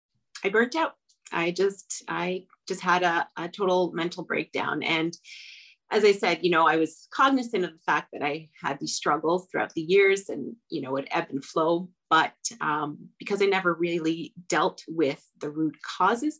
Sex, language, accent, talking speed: female, English, American, 185 wpm